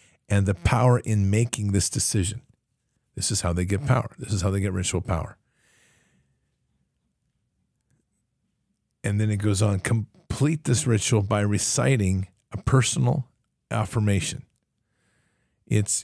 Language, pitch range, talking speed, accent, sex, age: English, 100-125 Hz, 125 wpm, American, male, 50-69